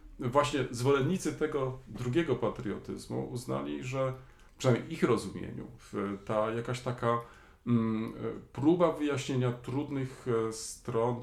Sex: male